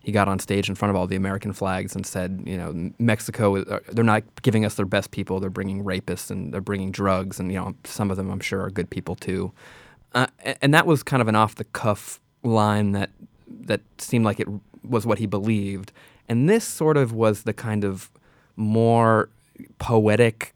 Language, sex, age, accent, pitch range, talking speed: English, male, 20-39, American, 100-115 Hz, 205 wpm